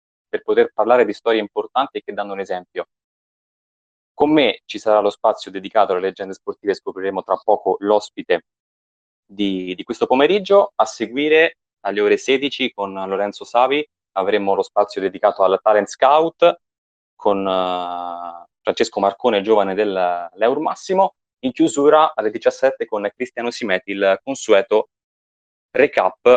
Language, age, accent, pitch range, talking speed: Italian, 20-39, native, 95-150 Hz, 135 wpm